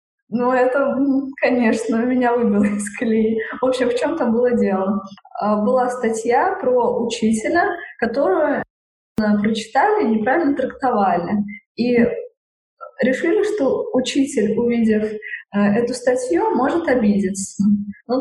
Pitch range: 215-265 Hz